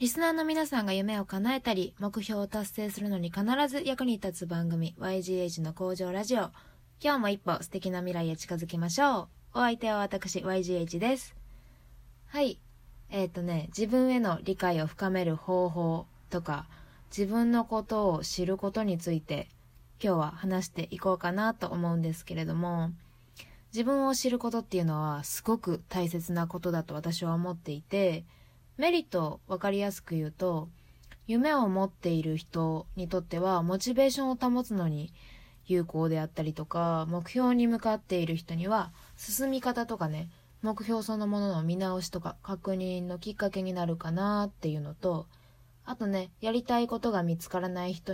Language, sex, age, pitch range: Japanese, female, 20-39, 165-215 Hz